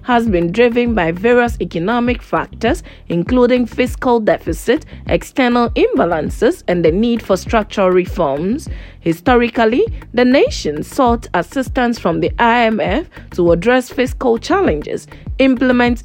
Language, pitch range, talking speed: English, 195-250 Hz, 115 wpm